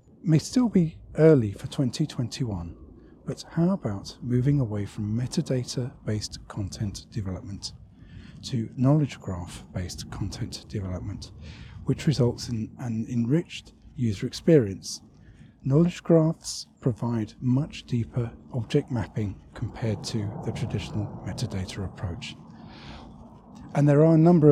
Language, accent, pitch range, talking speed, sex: English, British, 110-140 Hz, 110 wpm, male